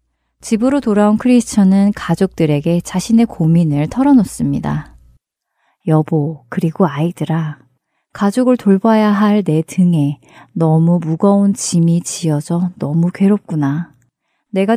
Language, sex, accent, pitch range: Korean, female, native, 155-210 Hz